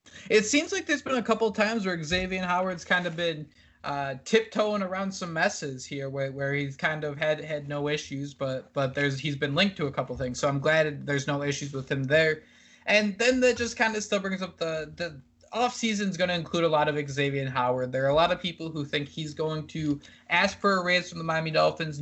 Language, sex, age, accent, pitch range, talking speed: English, male, 20-39, American, 150-205 Hz, 240 wpm